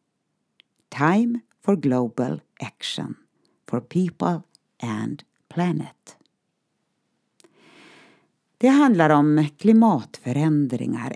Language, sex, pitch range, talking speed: Swedish, female, 135-215 Hz, 65 wpm